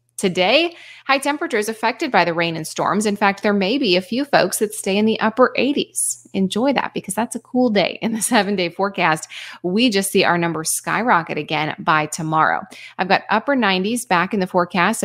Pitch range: 170-230 Hz